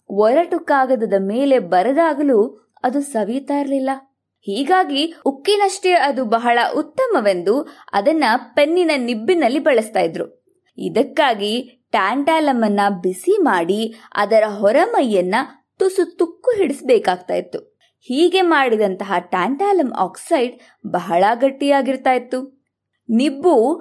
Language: Kannada